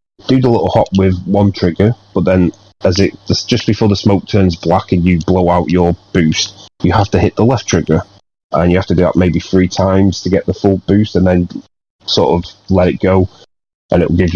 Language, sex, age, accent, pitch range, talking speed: English, male, 30-49, British, 85-100 Hz, 225 wpm